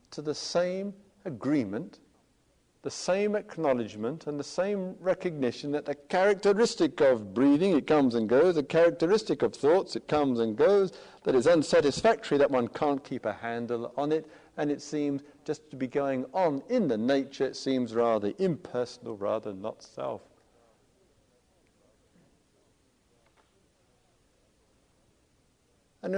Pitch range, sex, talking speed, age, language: 125-180 Hz, male, 135 wpm, 50-69, English